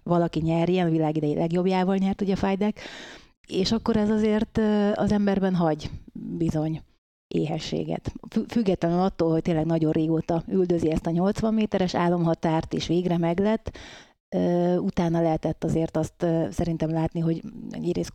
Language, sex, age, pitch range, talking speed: Hungarian, female, 30-49, 160-190 Hz, 130 wpm